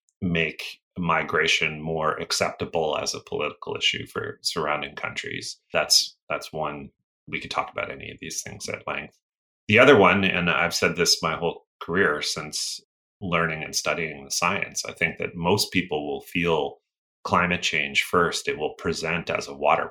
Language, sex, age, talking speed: English, male, 30-49, 170 wpm